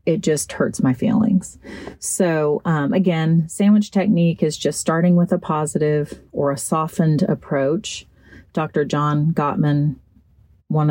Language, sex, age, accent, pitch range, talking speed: English, female, 40-59, American, 150-190 Hz, 130 wpm